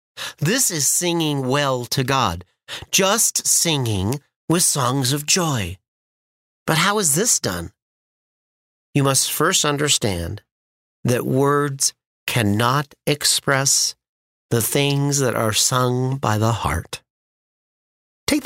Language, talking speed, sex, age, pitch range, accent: English, 110 wpm, male, 40-59, 125-175 Hz, American